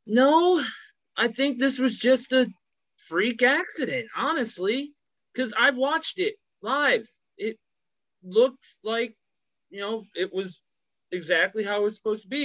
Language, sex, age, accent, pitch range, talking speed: English, male, 30-49, American, 170-230 Hz, 140 wpm